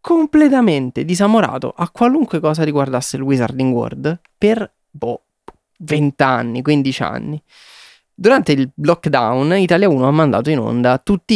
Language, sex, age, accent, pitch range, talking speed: Italian, male, 20-39, native, 120-155 Hz, 130 wpm